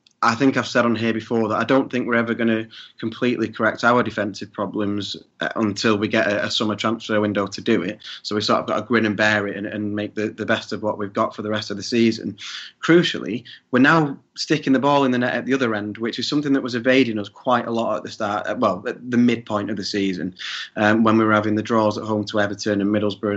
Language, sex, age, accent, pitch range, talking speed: English, male, 20-39, British, 105-125 Hz, 265 wpm